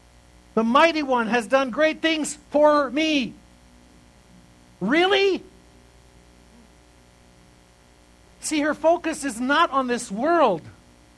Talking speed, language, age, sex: 95 wpm, English, 50-69, male